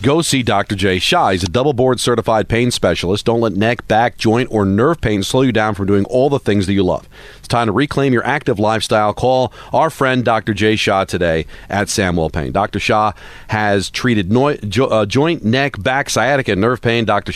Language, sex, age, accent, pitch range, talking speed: English, male, 40-59, American, 100-125 Hz, 210 wpm